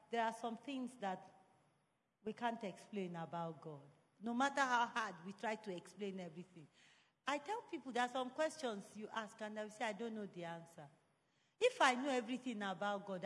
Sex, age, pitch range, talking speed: female, 40-59, 195-275 Hz, 190 wpm